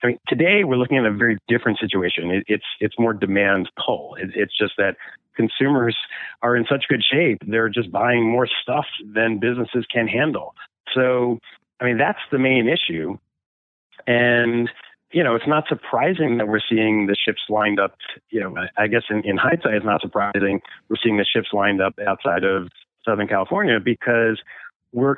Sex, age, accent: male, 40-59, American